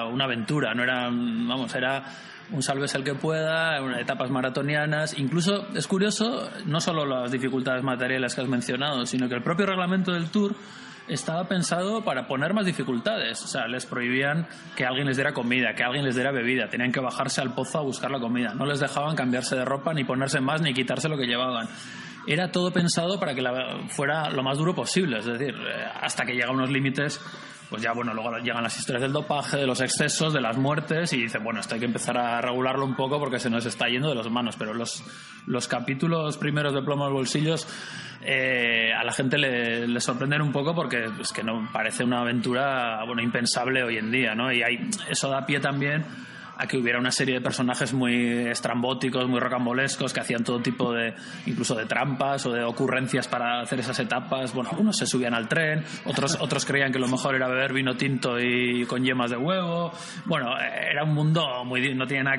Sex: male